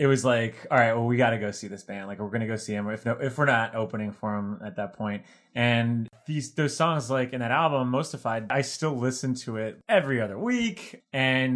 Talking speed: 250 wpm